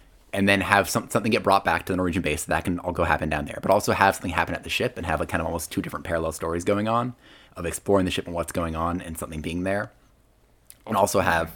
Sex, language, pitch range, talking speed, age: male, English, 85-105 Hz, 285 wpm, 20-39